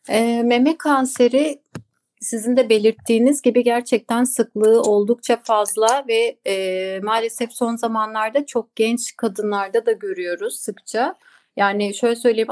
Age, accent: 30-49, native